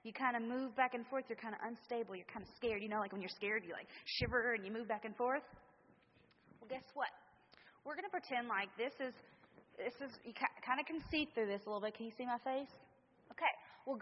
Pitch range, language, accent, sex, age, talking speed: 225-280 Hz, English, American, female, 30-49, 255 wpm